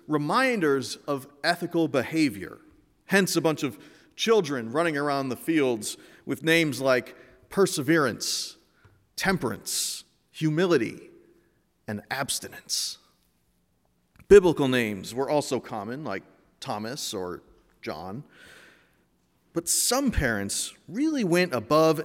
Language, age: English, 40-59